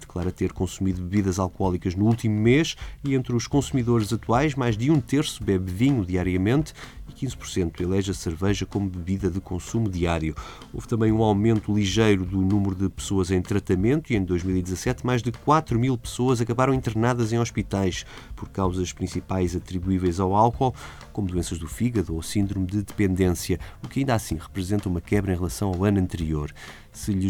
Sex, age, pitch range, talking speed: male, 20-39, 95-120 Hz, 180 wpm